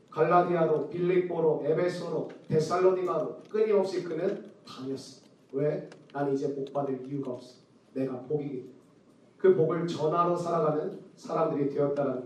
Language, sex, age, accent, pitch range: Korean, male, 40-59, native, 180-285 Hz